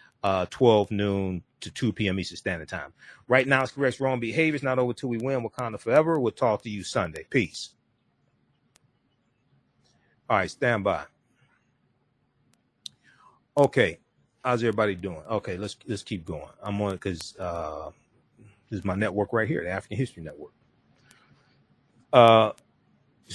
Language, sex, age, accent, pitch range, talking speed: English, male, 40-59, American, 95-125 Hz, 150 wpm